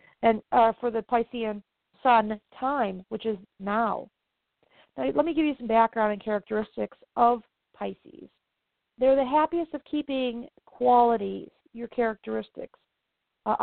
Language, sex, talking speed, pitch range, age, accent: English, female, 130 wpm, 210-255 Hz, 40-59, American